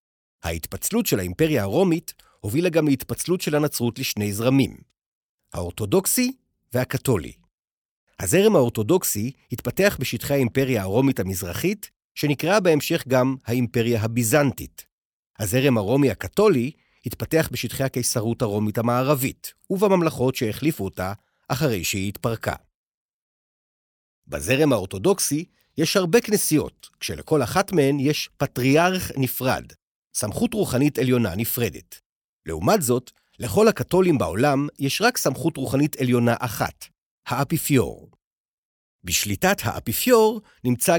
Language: Hebrew